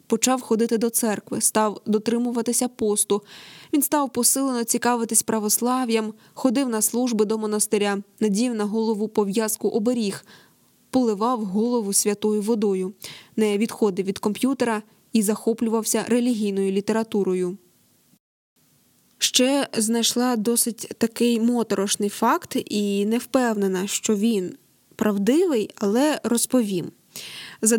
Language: Ukrainian